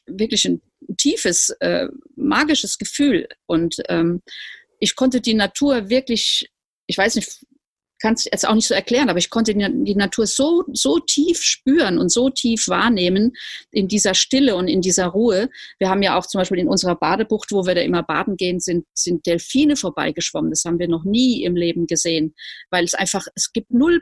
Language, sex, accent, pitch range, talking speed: German, female, German, 180-235 Hz, 185 wpm